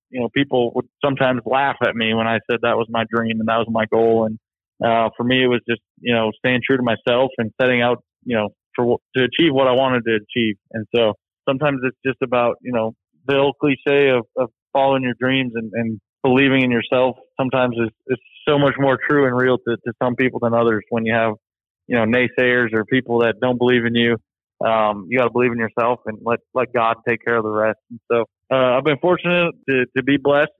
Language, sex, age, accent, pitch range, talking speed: English, male, 20-39, American, 115-125 Hz, 235 wpm